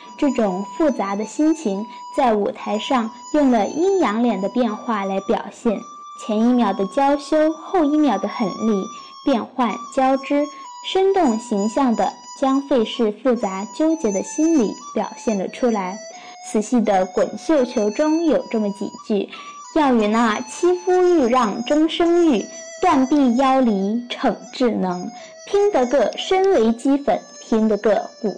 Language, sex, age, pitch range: Chinese, female, 10-29, 220-310 Hz